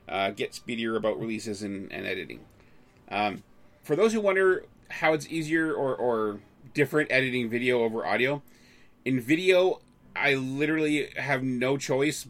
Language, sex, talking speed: English, male, 145 wpm